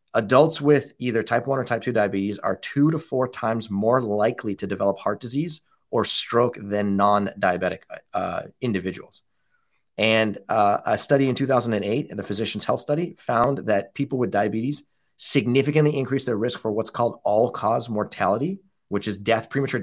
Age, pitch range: 30-49, 105-135 Hz